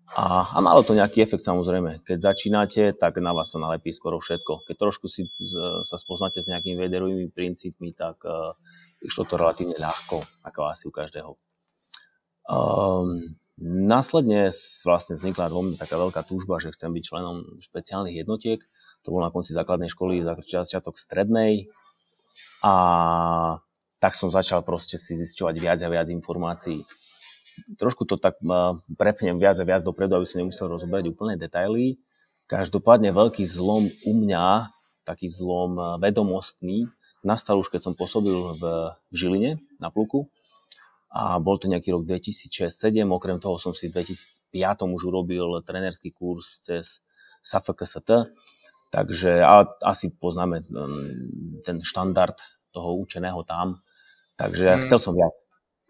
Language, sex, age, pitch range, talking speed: Slovak, male, 20-39, 85-95 Hz, 140 wpm